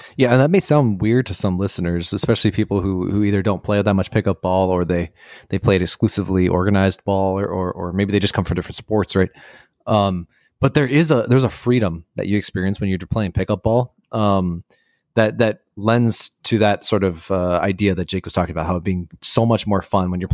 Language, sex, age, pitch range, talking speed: English, male, 30-49, 95-120 Hz, 230 wpm